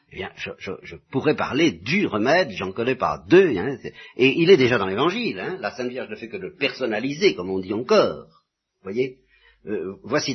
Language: French